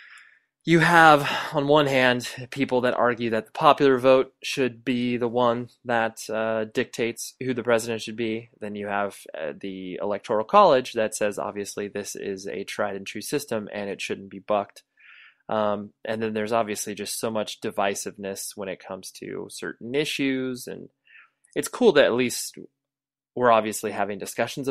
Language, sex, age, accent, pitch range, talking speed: English, male, 20-39, American, 105-130 Hz, 170 wpm